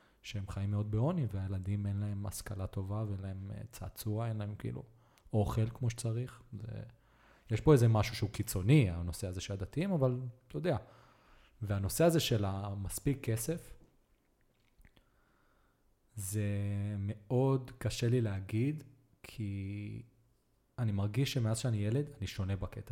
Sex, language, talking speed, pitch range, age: male, Hebrew, 135 wpm, 100-120 Hz, 20-39